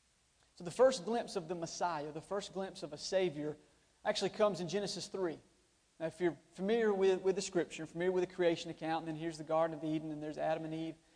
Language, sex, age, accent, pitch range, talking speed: English, male, 40-59, American, 160-180 Hz, 230 wpm